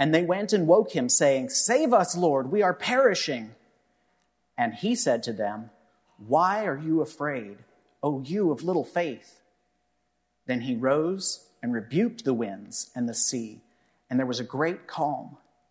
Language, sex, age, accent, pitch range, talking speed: English, male, 40-59, American, 115-160 Hz, 165 wpm